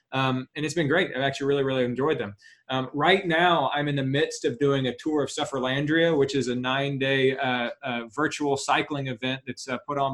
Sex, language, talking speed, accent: male, English, 220 wpm, American